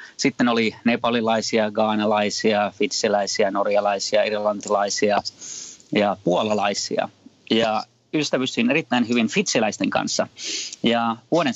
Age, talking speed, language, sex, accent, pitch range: 30-49, 90 wpm, Finnish, male, native, 105-120 Hz